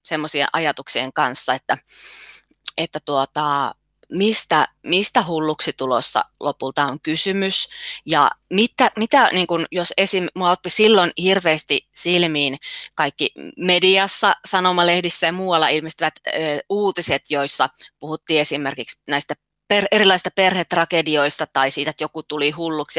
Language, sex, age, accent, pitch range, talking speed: Finnish, female, 20-39, native, 145-190 Hz, 110 wpm